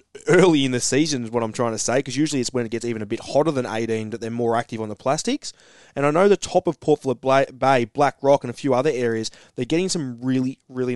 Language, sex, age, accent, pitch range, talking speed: English, male, 20-39, Australian, 115-140 Hz, 275 wpm